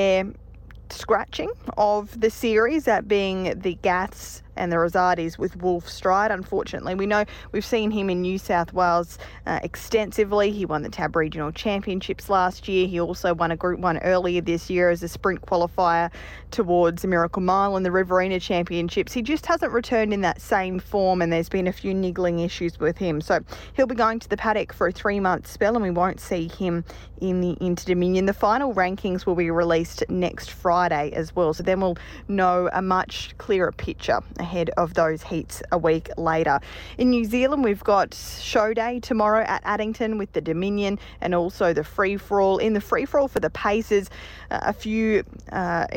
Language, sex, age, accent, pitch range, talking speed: English, female, 20-39, Australian, 175-210 Hz, 190 wpm